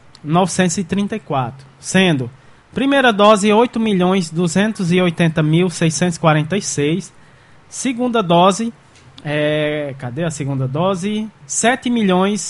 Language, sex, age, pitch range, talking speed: Portuguese, male, 20-39, 150-200 Hz, 80 wpm